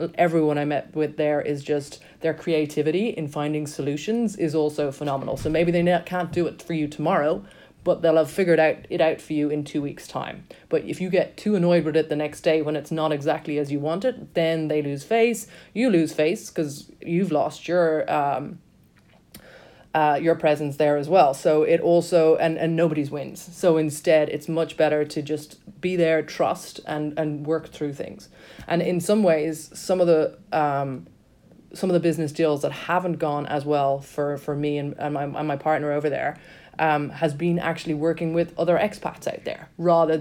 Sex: female